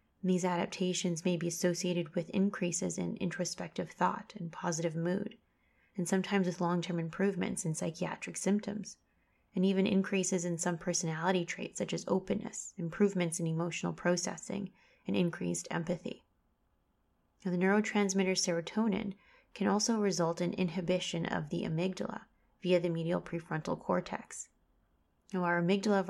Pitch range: 175-195 Hz